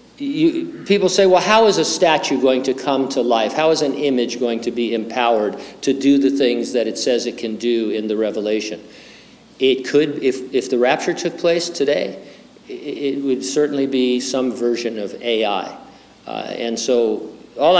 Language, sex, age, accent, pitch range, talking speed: English, male, 50-69, American, 115-155 Hz, 180 wpm